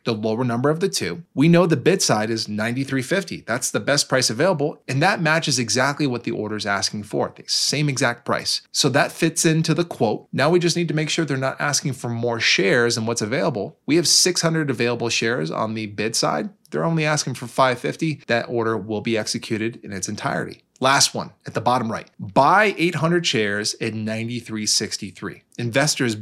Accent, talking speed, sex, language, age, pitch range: American, 200 wpm, male, English, 20-39, 115-155 Hz